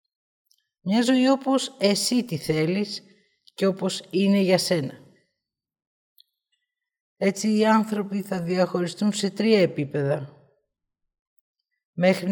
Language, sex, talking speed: Greek, female, 95 wpm